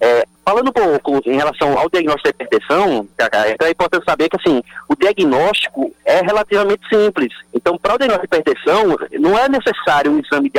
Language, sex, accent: Portuguese, male, Brazilian